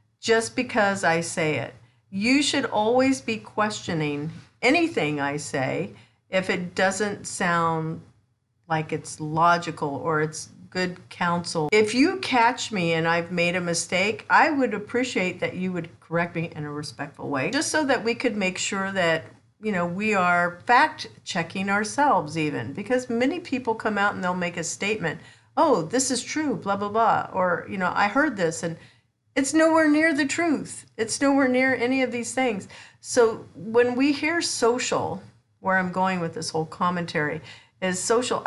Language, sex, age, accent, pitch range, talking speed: English, female, 50-69, American, 160-230 Hz, 175 wpm